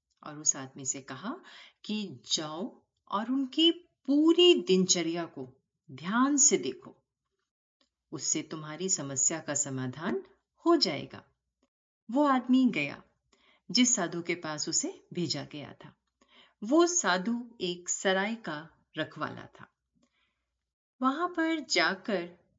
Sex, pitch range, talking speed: female, 165-280 Hz, 115 wpm